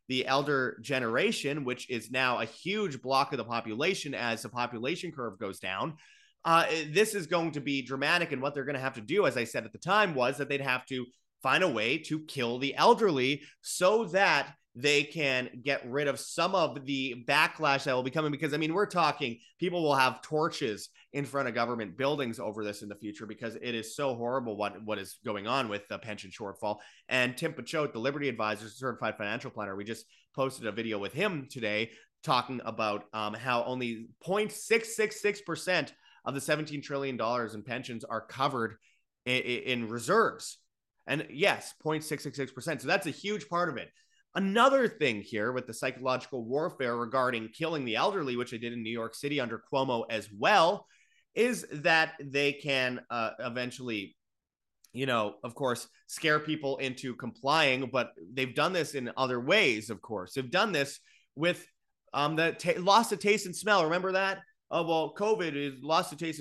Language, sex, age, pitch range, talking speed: English, male, 30-49, 120-155 Hz, 190 wpm